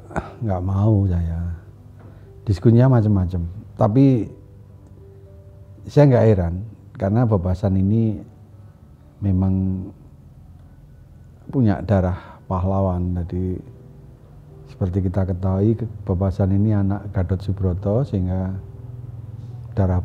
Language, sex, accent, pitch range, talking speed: Indonesian, male, native, 90-110 Hz, 80 wpm